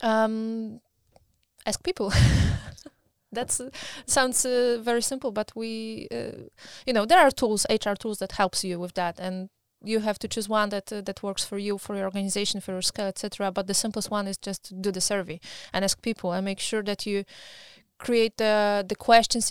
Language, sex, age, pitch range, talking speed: English, female, 20-39, 195-225 Hz, 200 wpm